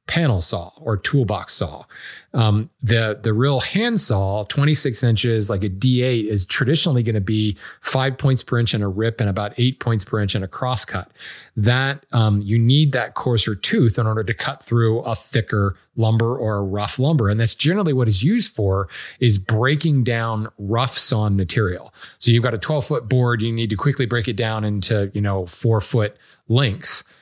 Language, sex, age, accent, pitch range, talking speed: English, male, 40-59, American, 110-140 Hz, 200 wpm